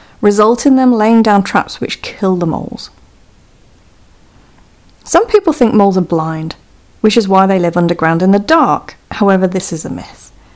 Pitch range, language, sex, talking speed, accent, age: 170-255 Hz, English, female, 170 wpm, British, 40-59